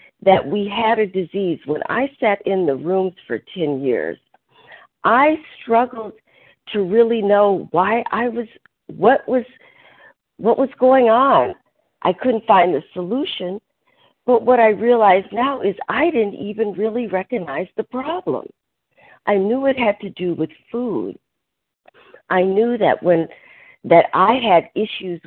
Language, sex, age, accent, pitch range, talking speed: English, female, 50-69, American, 160-230 Hz, 145 wpm